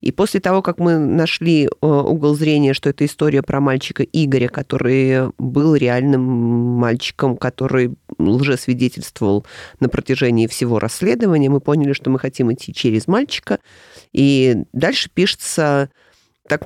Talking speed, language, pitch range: 130 wpm, Russian, 130-155 Hz